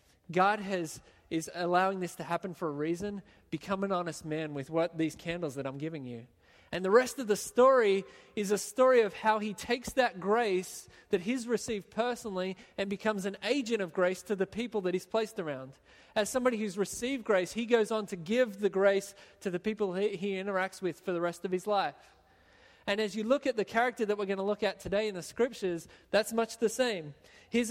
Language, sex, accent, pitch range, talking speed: English, male, Australian, 175-220 Hz, 220 wpm